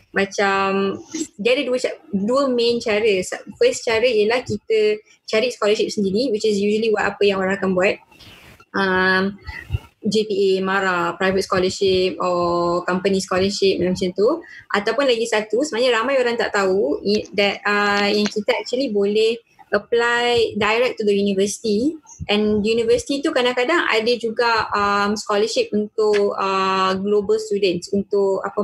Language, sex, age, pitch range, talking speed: Malay, female, 20-39, 200-235 Hz, 125 wpm